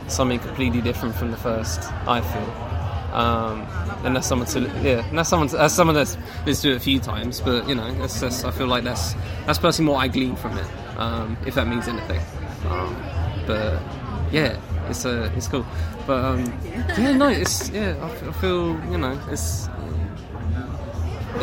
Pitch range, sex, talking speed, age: 95-130 Hz, male, 190 wpm, 20-39